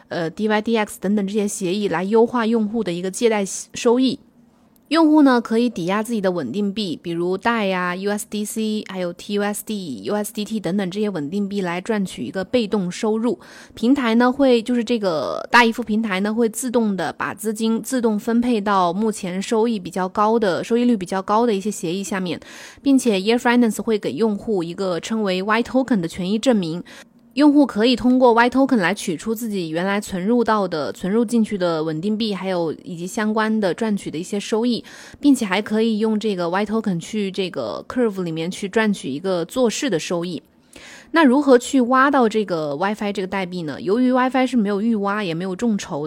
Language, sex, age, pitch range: Chinese, female, 20-39, 195-235 Hz